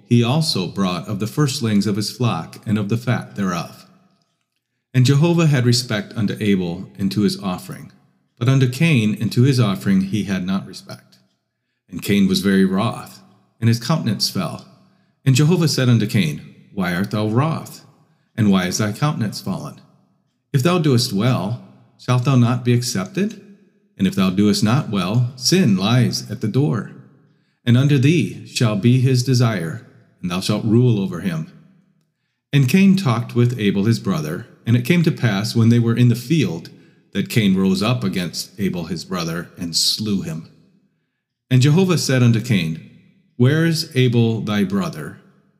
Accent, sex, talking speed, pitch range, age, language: American, male, 170 wpm, 105-150 Hz, 40-59, English